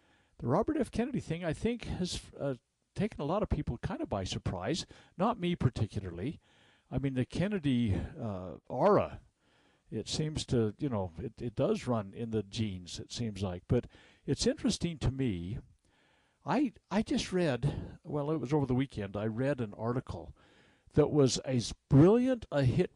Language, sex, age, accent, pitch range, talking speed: English, male, 60-79, American, 110-155 Hz, 175 wpm